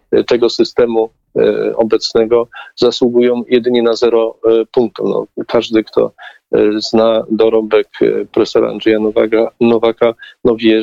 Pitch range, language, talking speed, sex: 110-150 Hz, Polish, 90 wpm, male